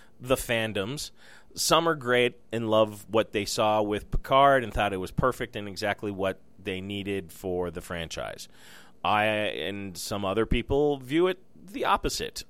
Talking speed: 165 wpm